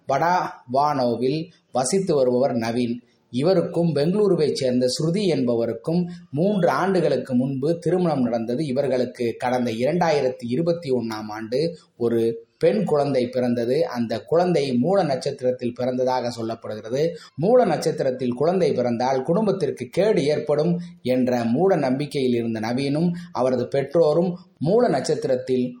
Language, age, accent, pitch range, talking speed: Tamil, 20-39, native, 125-170 Hz, 105 wpm